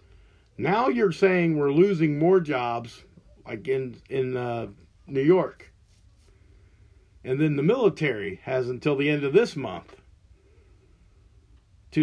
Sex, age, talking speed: male, 50-69, 125 wpm